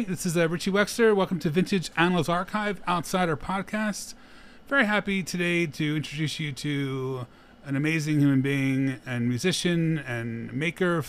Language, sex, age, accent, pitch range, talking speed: English, male, 30-49, American, 135-185 Hz, 150 wpm